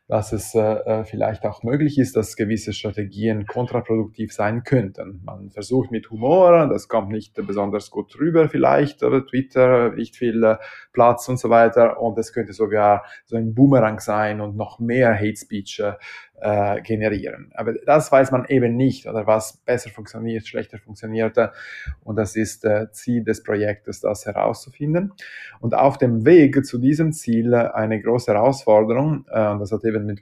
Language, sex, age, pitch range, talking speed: German, male, 20-39, 105-125 Hz, 165 wpm